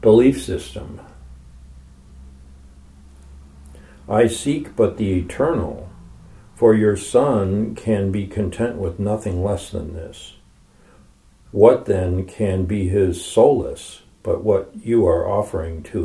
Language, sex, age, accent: English, male, 60-79, American